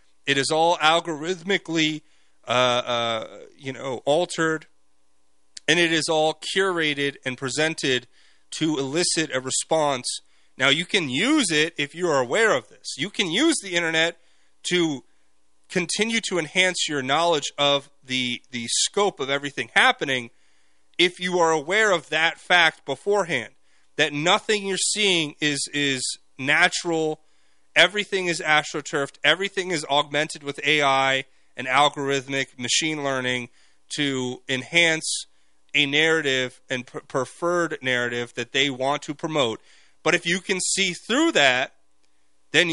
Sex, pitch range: male, 125-170 Hz